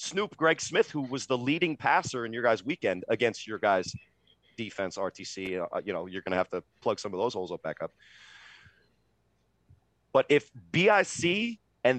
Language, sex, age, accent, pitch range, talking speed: English, male, 30-49, American, 110-140 Hz, 185 wpm